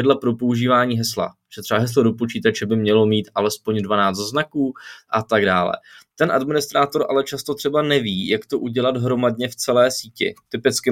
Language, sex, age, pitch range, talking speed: Czech, male, 20-39, 105-135 Hz, 170 wpm